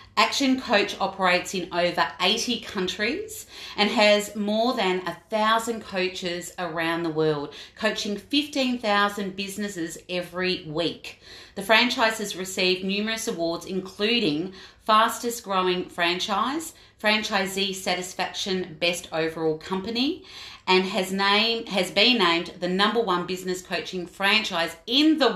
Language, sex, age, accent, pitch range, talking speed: English, female, 30-49, Australian, 180-215 Hz, 120 wpm